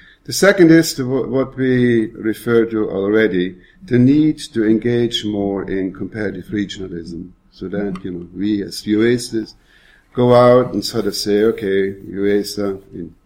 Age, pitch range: 50-69, 95-115 Hz